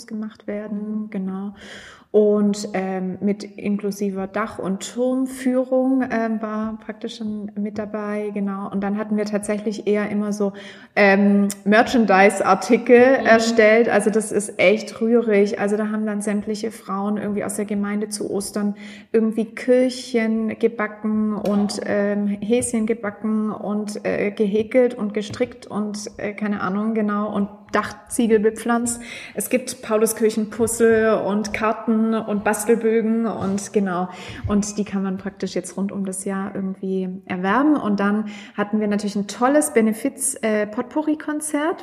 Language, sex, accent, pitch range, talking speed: German, female, German, 205-230 Hz, 140 wpm